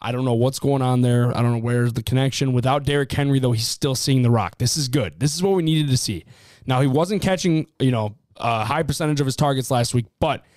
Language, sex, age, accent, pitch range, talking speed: English, male, 20-39, American, 120-150 Hz, 265 wpm